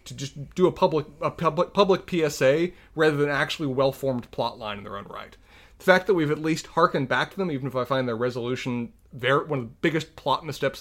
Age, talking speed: 30-49, 230 wpm